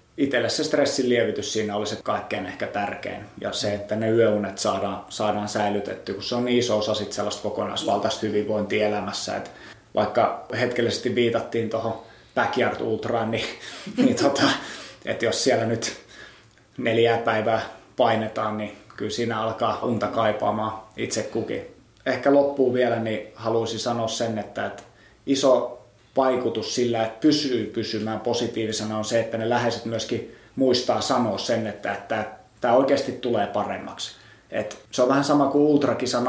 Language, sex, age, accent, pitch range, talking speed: Finnish, male, 20-39, native, 110-120 Hz, 150 wpm